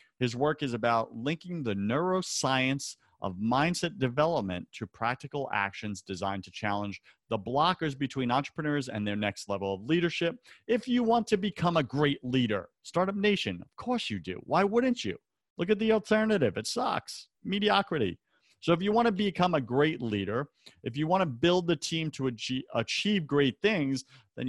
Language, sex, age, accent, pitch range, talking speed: English, male, 40-59, American, 110-160 Hz, 175 wpm